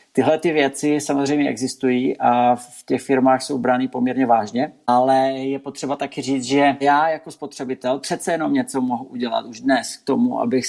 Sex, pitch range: male, 130-145 Hz